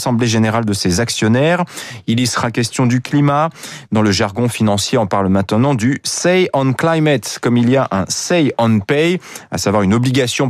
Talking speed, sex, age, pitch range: 215 wpm, male, 30-49, 110-155 Hz